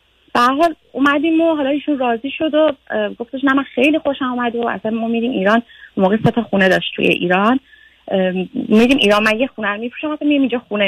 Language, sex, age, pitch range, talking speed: Persian, female, 30-49, 195-245 Hz, 195 wpm